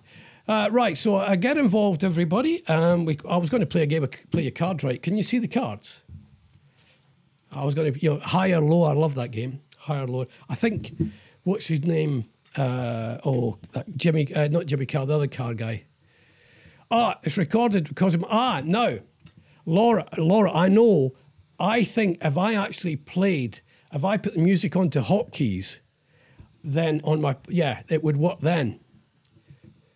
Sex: male